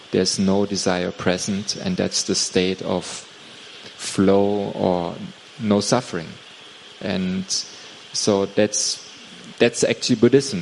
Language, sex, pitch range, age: Thai, male, 100-115 Hz, 30-49